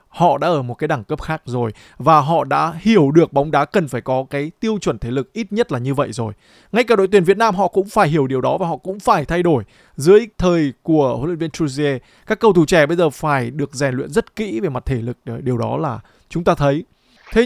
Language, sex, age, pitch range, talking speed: Vietnamese, male, 20-39, 145-205 Hz, 270 wpm